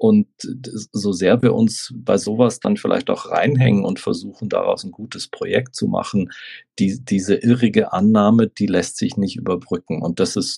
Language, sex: German, male